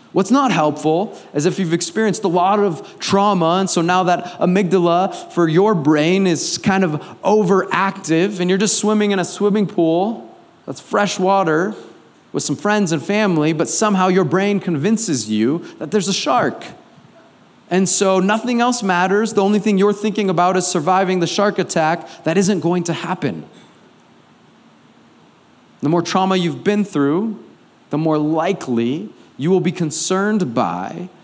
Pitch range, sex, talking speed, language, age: 145-195 Hz, male, 160 wpm, English, 30-49